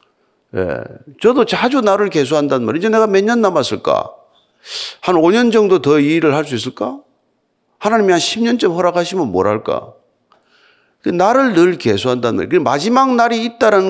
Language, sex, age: Korean, male, 40-59